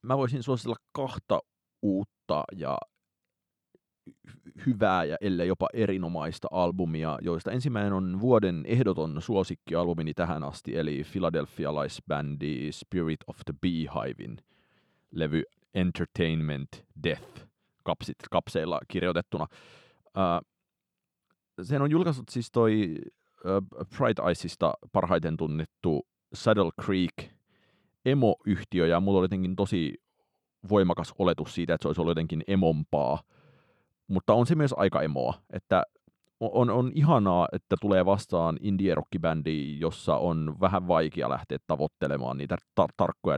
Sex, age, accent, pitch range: male, 30-49, native, 80-105 Hz